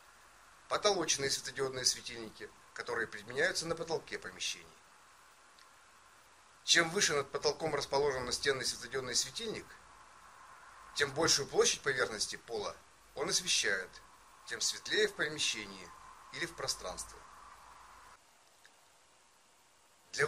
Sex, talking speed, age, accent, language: male, 90 wpm, 30-49, native, Russian